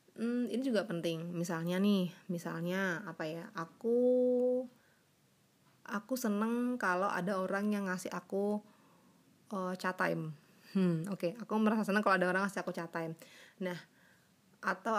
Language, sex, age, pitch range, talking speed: Indonesian, female, 20-39, 175-215 Hz, 145 wpm